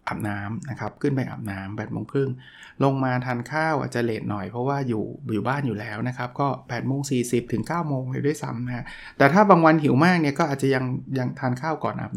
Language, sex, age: Thai, male, 20-39